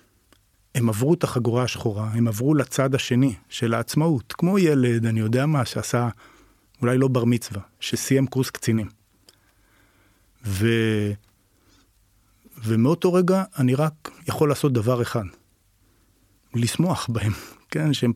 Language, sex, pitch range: Hebrew, male, 105-130 Hz